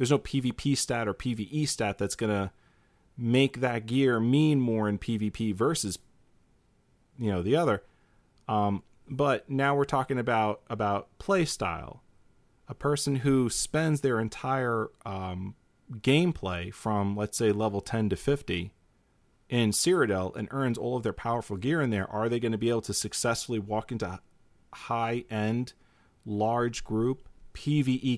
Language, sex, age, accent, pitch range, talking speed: English, male, 40-59, American, 110-140 Hz, 150 wpm